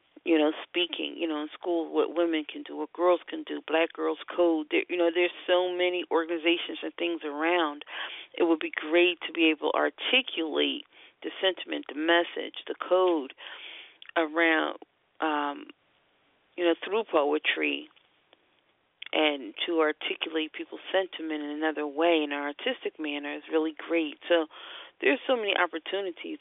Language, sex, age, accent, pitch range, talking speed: English, female, 40-59, American, 155-190 Hz, 155 wpm